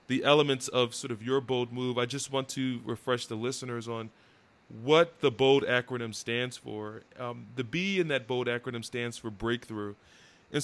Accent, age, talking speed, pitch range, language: American, 20-39, 185 wpm, 115-140 Hz, English